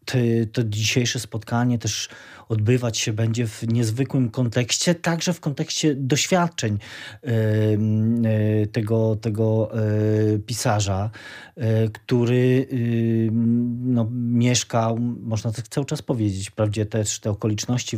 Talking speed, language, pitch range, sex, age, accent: 120 wpm, Polish, 110-125 Hz, male, 40-59, native